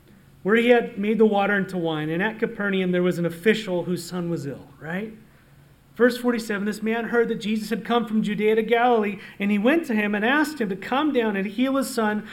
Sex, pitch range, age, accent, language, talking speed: male, 170-220 Hz, 40-59, American, English, 235 wpm